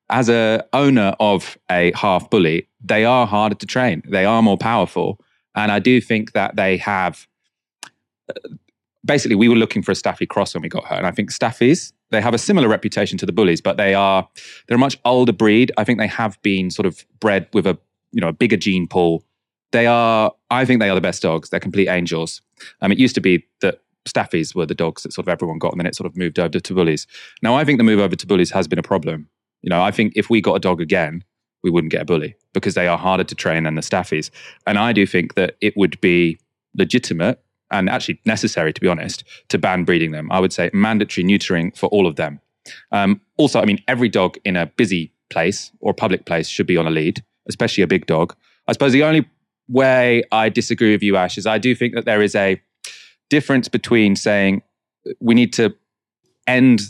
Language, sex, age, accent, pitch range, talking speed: English, male, 30-49, British, 95-120 Hz, 230 wpm